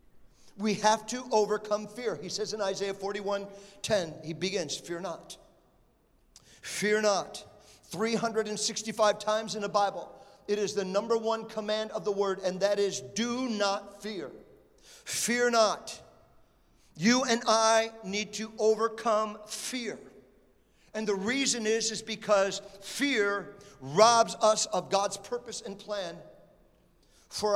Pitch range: 195-220 Hz